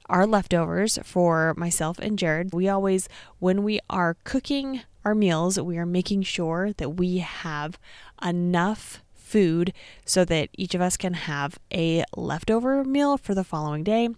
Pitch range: 165-205 Hz